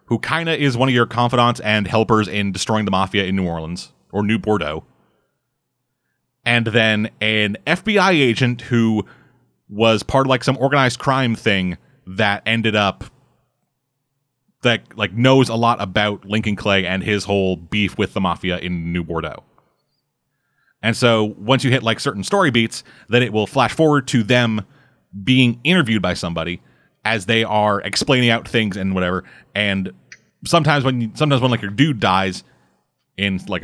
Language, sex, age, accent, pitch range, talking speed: English, male, 30-49, American, 100-135 Hz, 170 wpm